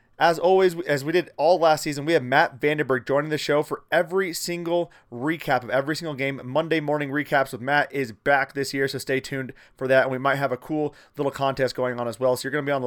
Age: 30-49